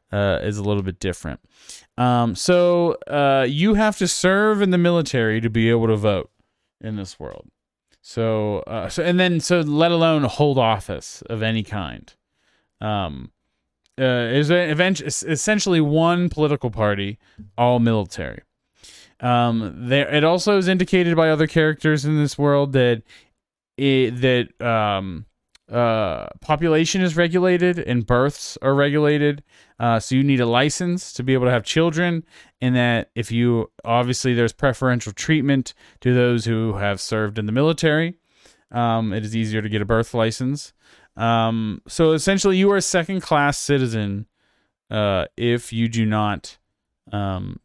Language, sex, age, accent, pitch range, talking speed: English, male, 20-39, American, 110-155 Hz, 155 wpm